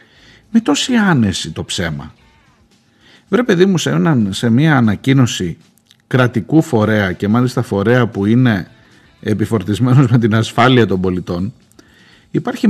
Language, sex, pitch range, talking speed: Greek, male, 100-135 Hz, 130 wpm